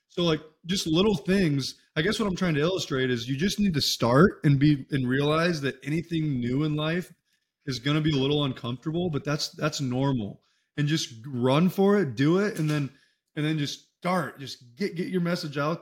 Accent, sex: American, male